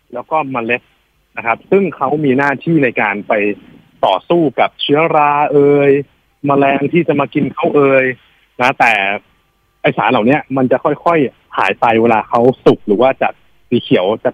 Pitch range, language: 120-150 Hz, Thai